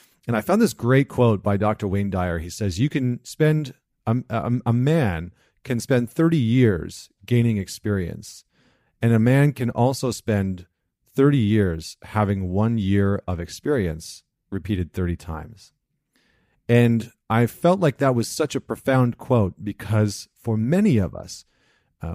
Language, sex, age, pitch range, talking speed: English, male, 40-59, 100-140 Hz, 155 wpm